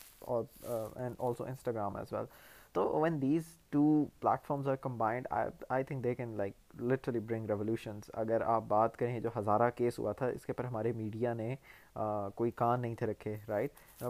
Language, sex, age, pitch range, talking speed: Urdu, male, 20-39, 115-135 Hz, 185 wpm